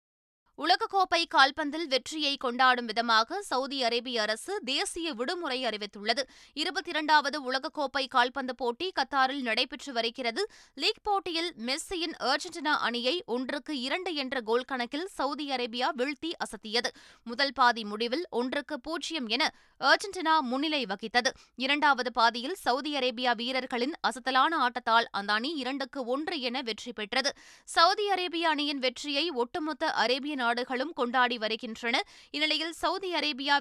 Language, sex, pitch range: Tamil, female, 240-320 Hz